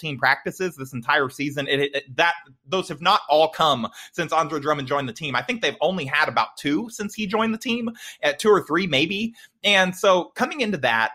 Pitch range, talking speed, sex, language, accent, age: 145-190 Hz, 220 wpm, male, English, American, 20-39